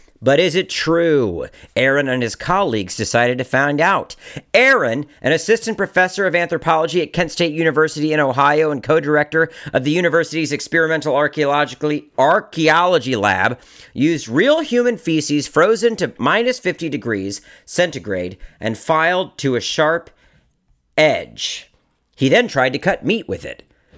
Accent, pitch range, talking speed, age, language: American, 135-180 Hz, 140 wpm, 40-59, English